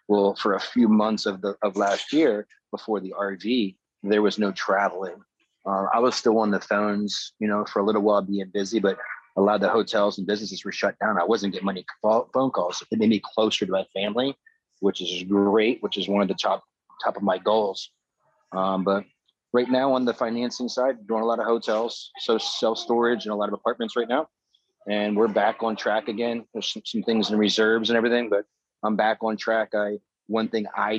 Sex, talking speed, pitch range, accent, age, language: male, 225 wpm, 100-115 Hz, American, 30-49, English